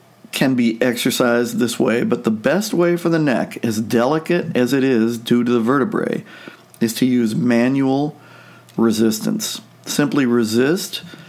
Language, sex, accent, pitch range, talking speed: English, male, American, 120-150 Hz, 150 wpm